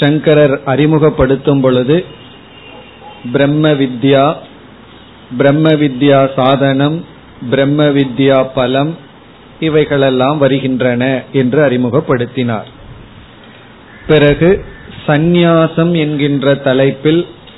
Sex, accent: male, native